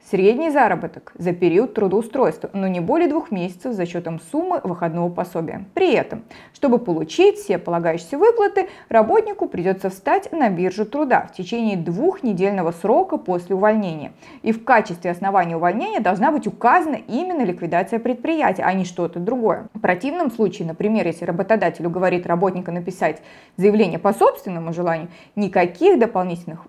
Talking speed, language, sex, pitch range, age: 145 wpm, Russian, female, 175-265 Hz, 30-49